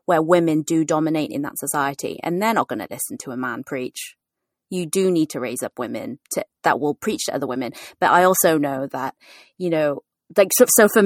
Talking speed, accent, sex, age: 220 wpm, British, female, 20-39